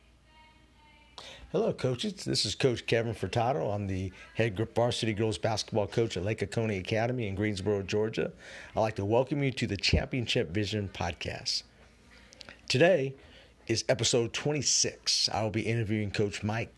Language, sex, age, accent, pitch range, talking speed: English, male, 50-69, American, 105-135 Hz, 145 wpm